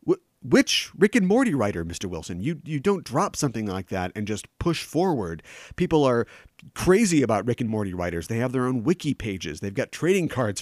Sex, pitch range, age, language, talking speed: male, 110-165 Hz, 40-59, English, 205 wpm